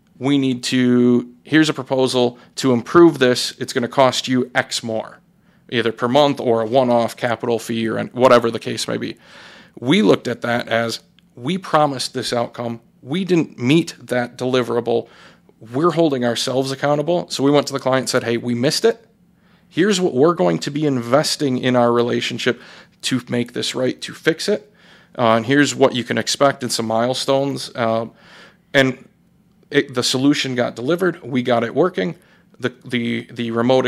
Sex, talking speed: male, 180 wpm